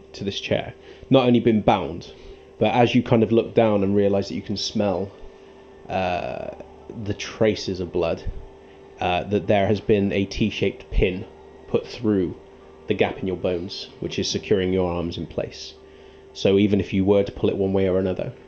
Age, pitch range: 20-39, 85-105 Hz